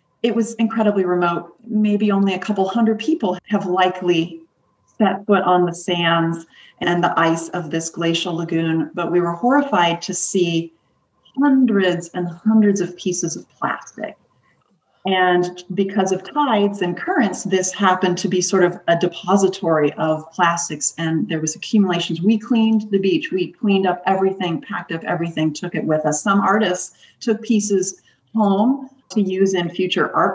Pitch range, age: 165-195 Hz, 40-59